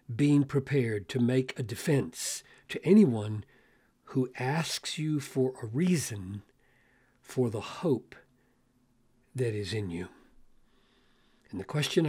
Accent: American